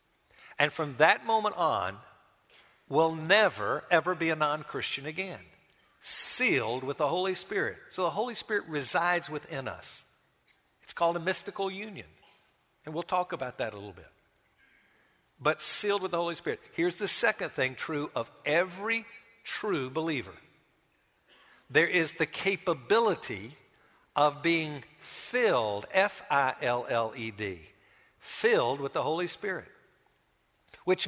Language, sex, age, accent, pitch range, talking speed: English, male, 60-79, American, 150-200 Hz, 125 wpm